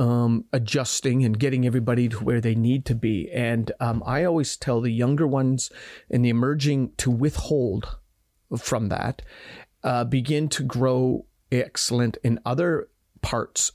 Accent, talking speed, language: American, 150 wpm, English